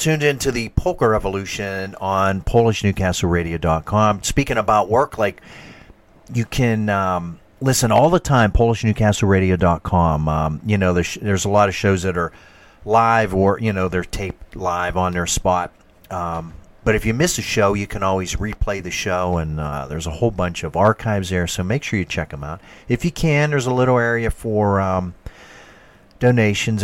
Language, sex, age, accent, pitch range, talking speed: English, male, 40-59, American, 90-115 Hz, 190 wpm